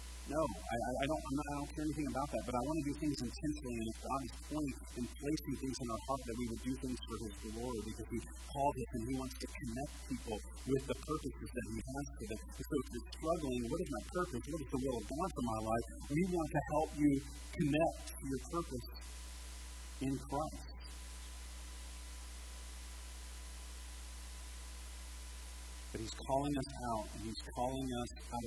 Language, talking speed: English, 195 wpm